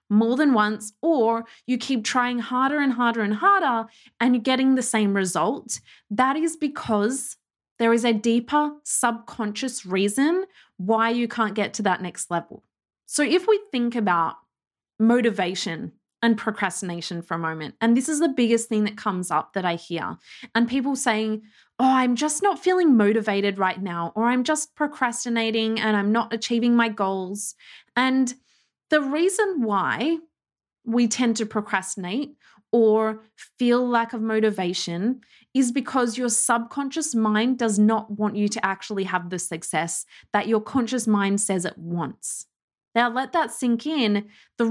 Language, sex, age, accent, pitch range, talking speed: English, female, 20-39, Australian, 210-260 Hz, 160 wpm